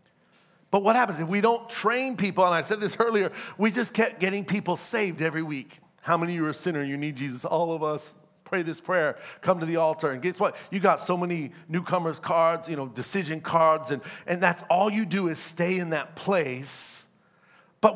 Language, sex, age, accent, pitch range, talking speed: English, male, 40-59, American, 160-205 Hz, 225 wpm